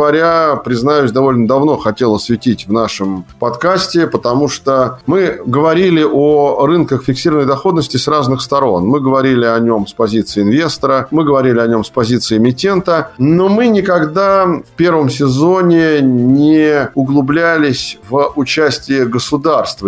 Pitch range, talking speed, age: 115-150 Hz, 135 wpm, 50-69